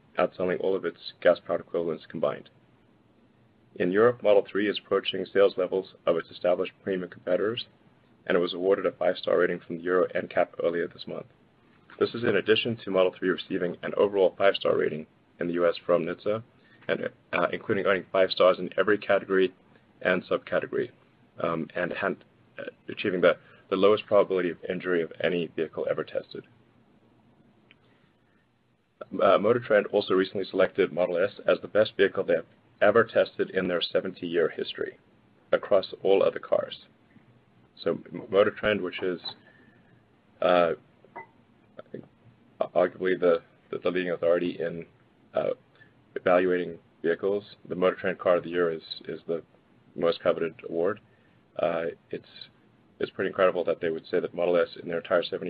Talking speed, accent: 160 wpm, American